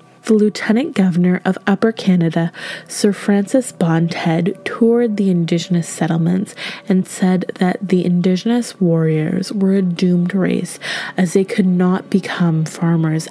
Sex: female